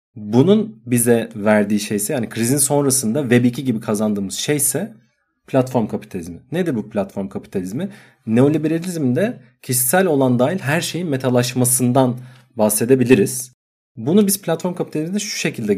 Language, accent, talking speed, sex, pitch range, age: Turkish, native, 125 wpm, male, 120-155 Hz, 40-59